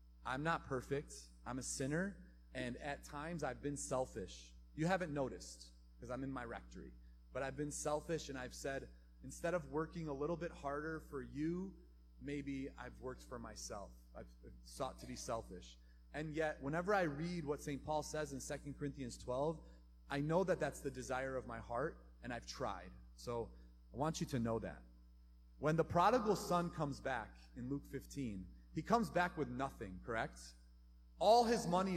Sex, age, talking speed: male, 30-49, 180 wpm